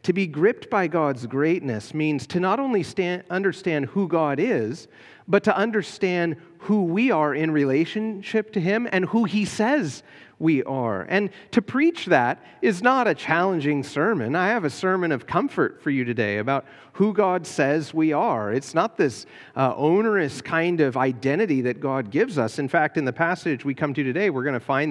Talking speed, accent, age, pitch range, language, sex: 195 wpm, American, 40-59, 130-185 Hz, English, male